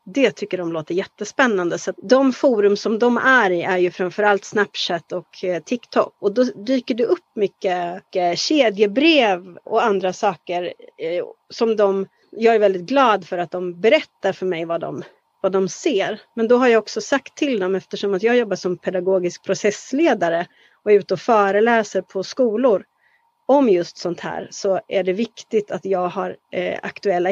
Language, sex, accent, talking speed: Swedish, female, native, 180 wpm